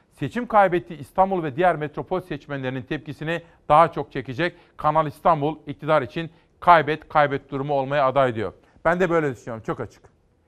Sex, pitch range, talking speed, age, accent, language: male, 140-175 Hz, 155 wpm, 40-59, native, Turkish